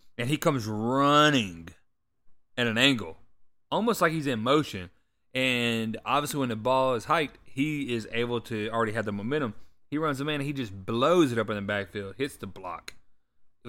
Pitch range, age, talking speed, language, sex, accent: 110-135 Hz, 30-49, 195 wpm, English, male, American